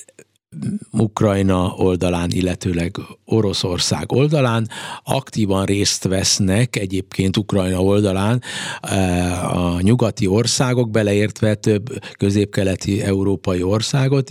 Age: 50-69